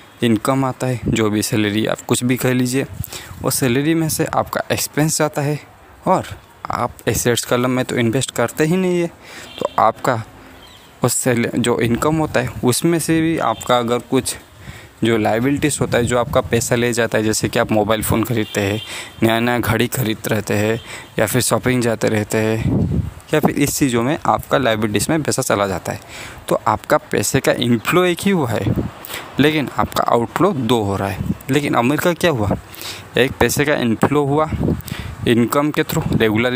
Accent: native